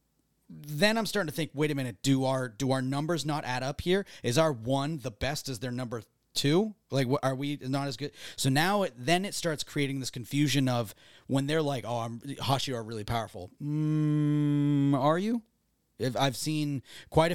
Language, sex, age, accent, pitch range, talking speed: English, male, 30-49, American, 125-155 Hz, 200 wpm